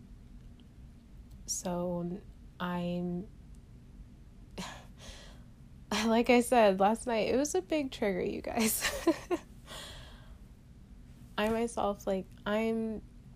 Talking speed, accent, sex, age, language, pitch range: 80 wpm, American, female, 20-39, English, 175-200 Hz